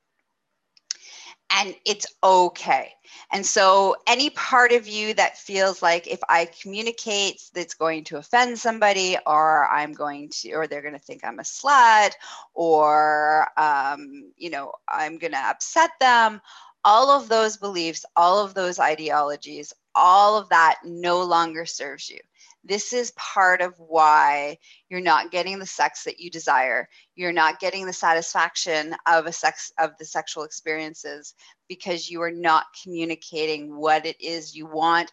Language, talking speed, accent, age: English, 155 wpm, American, 30-49